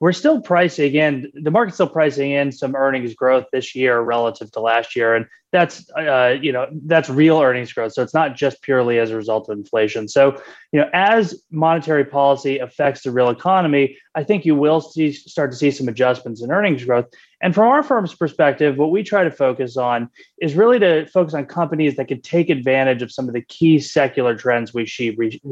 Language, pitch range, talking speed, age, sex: English, 125-165 Hz, 215 wpm, 30-49, male